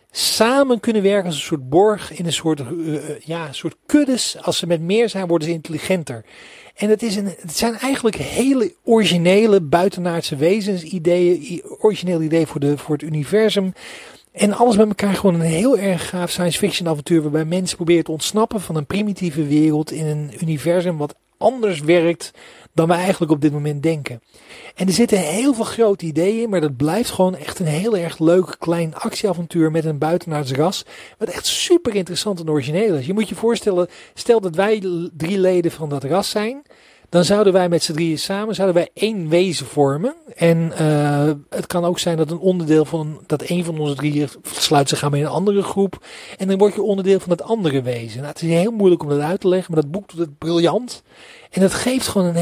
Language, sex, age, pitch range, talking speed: Dutch, male, 40-59, 155-200 Hz, 205 wpm